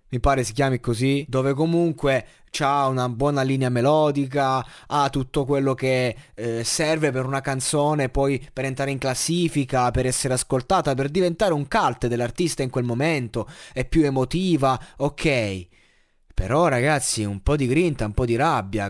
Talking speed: 160 wpm